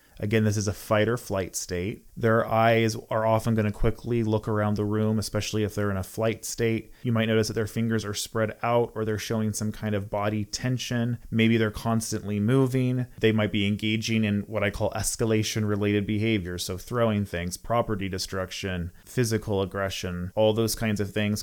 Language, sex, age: English, male, 30-49